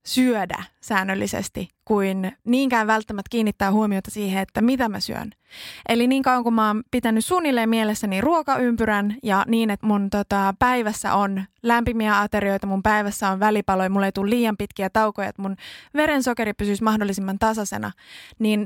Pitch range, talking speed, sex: 200-240 Hz, 155 wpm, female